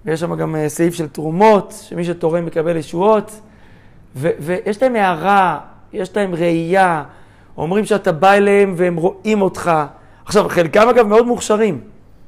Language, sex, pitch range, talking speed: Hebrew, male, 155-205 Hz, 140 wpm